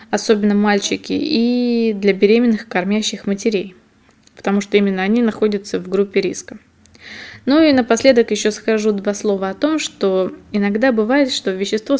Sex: female